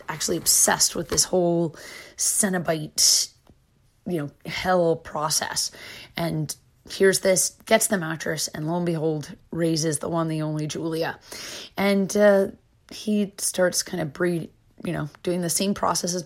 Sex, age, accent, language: female, 30-49, American, English